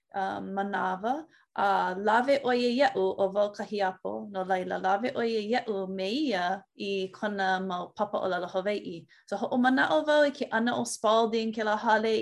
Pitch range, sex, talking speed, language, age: 195-230 Hz, female, 175 wpm, English, 20-39